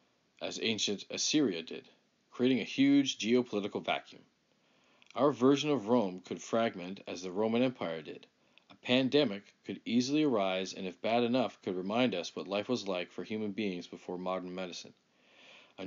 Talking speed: 165 wpm